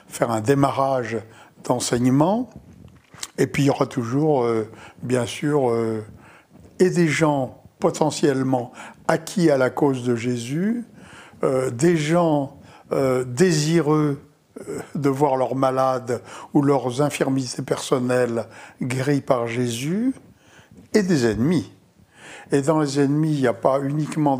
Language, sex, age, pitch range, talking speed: French, male, 60-79, 125-155 Hz, 130 wpm